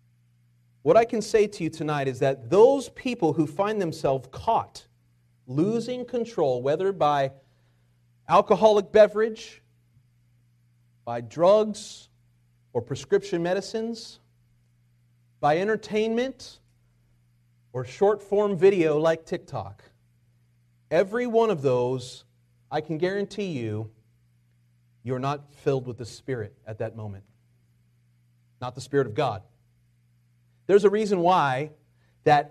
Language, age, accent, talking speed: English, 40-59, American, 110 wpm